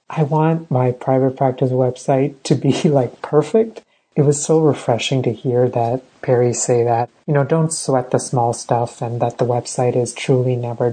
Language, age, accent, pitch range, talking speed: English, 30-49, American, 120-140 Hz, 185 wpm